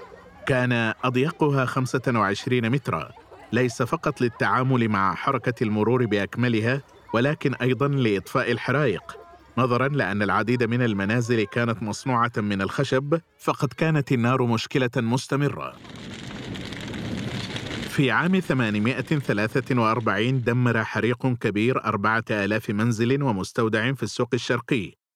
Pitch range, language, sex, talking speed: 115-135 Hz, Arabic, male, 105 wpm